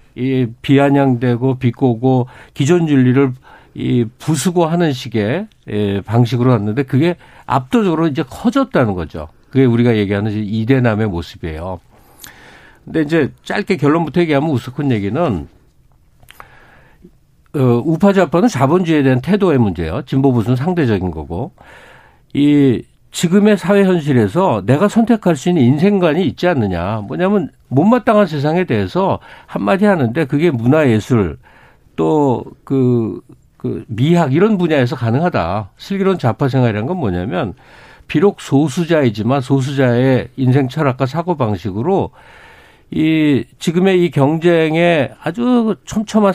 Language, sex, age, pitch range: Korean, male, 50-69, 120-170 Hz